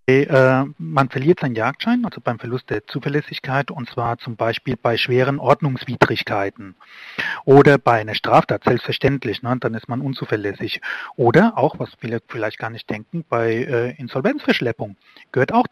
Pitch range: 125-150 Hz